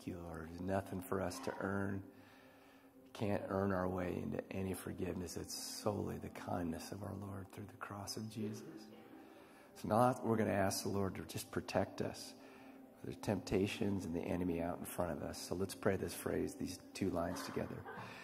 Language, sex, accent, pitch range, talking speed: English, male, American, 95-120 Hz, 195 wpm